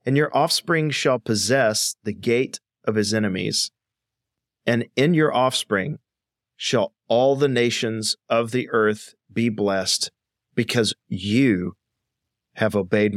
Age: 40-59